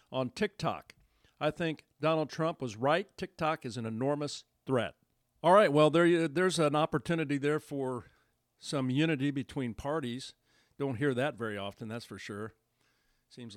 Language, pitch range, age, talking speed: English, 120-150 Hz, 50-69, 160 wpm